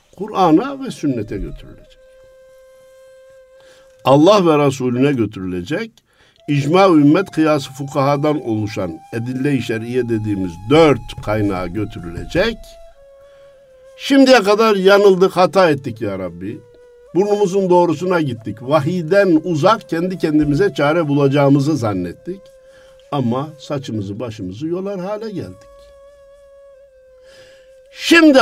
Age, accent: 60-79, native